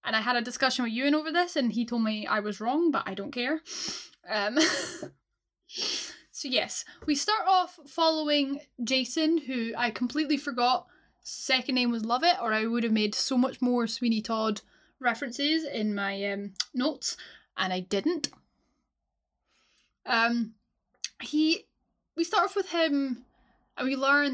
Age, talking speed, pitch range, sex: 10-29, 160 wpm, 230-295 Hz, female